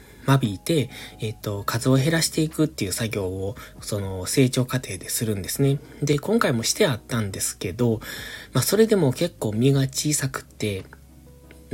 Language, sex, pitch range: Japanese, male, 105-150 Hz